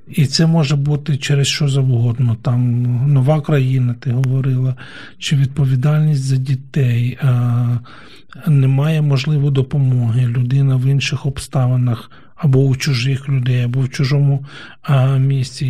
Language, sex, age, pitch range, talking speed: Ukrainian, male, 40-59, 130-150 Hz, 120 wpm